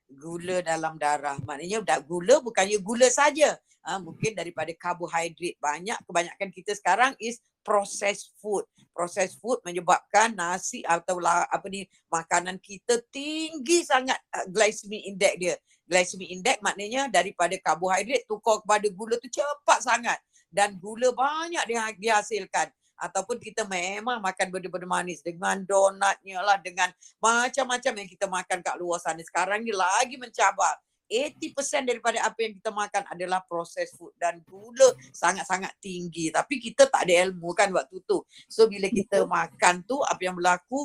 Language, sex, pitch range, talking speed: Indonesian, female, 180-245 Hz, 150 wpm